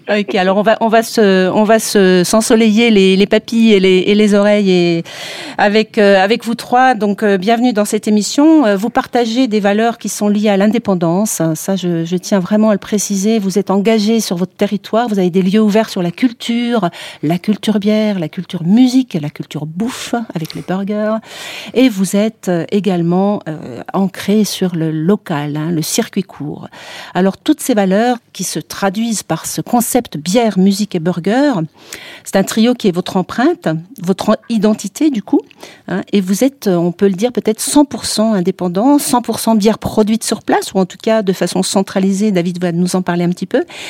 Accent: French